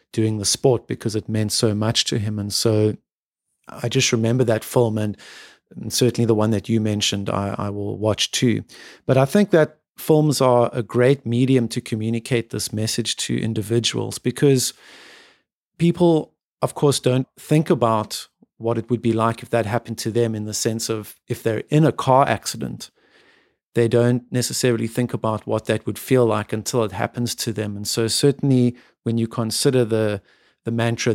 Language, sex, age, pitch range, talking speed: English, male, 50-69, 110-125 Hz, 185 wpm